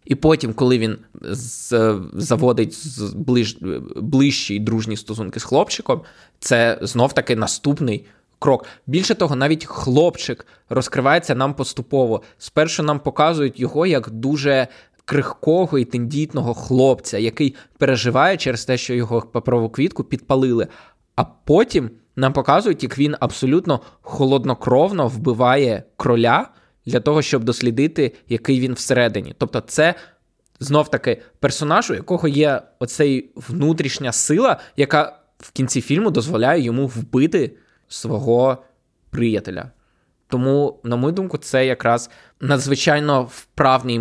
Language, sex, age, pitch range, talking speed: Ukrainian, male, 20-39, 120-145 Hz, 115 wpm